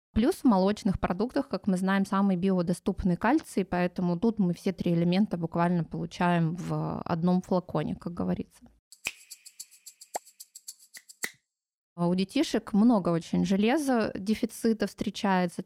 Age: 20-39